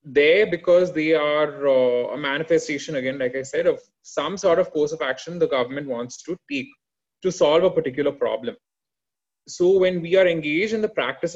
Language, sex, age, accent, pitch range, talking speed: English, male, 20-39, Indian, 135-190 Hz, 190 wpm